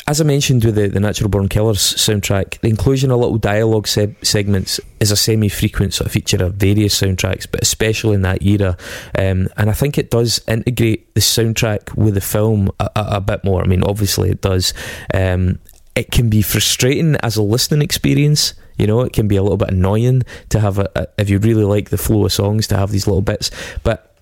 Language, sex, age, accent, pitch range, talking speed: English, male, 20-39, British, 100-110 Hz, 215 wpm